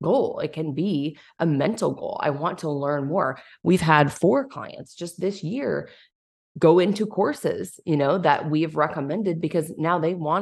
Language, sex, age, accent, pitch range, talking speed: English, female, 20-39, American, 145-180 Hz, 180 wpm